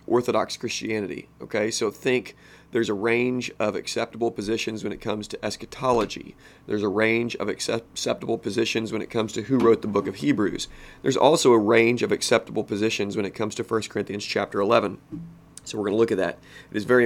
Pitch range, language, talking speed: 105-120 Hz, English, 200 wpm